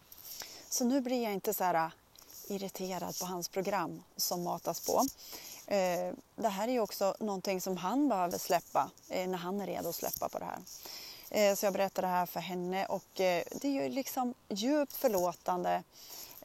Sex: female